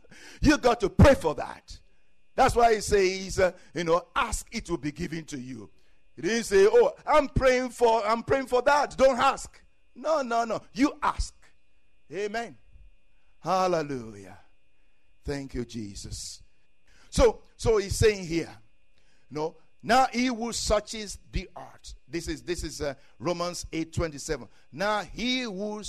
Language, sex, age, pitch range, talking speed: English, male, 60-79, 145-215 Hz, 160 wpm